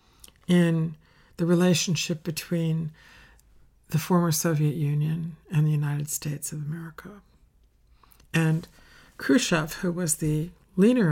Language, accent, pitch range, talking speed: English, American, 155-175 Hz, 110 wpm